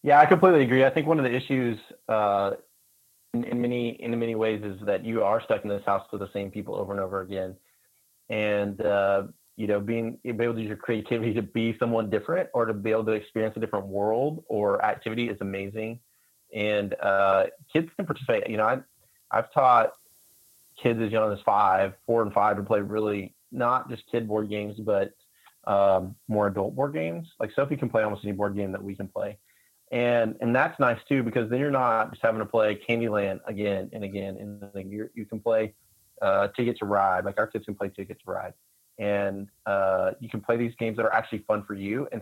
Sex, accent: male, American